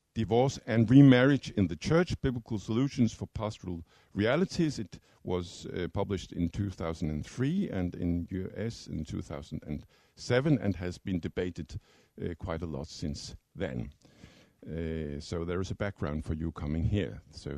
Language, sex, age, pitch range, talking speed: Danish, male, 50-69, 90-130 Hz, 145 wpm